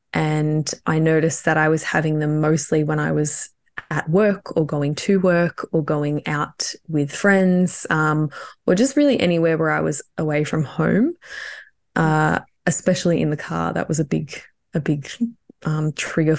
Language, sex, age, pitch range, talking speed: English, female, 20-39, 150-175 Hz, 170 wpm